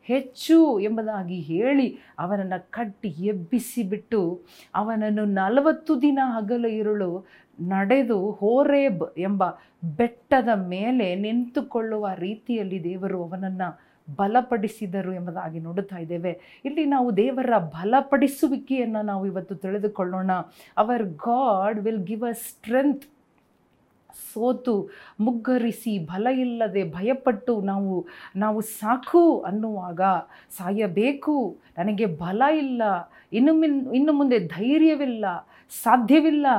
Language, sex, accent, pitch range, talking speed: Kannada, female, native, 190-250 Hz, 90 wpm